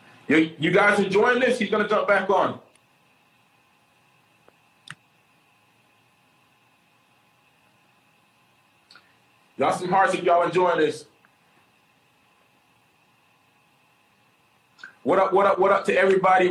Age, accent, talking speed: 30-49, American, 90 wpm